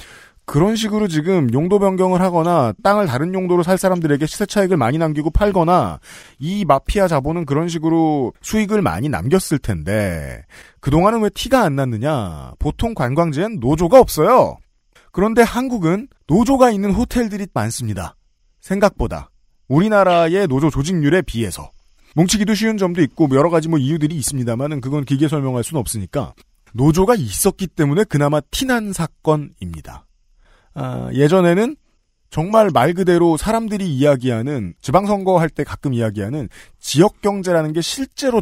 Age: 40-59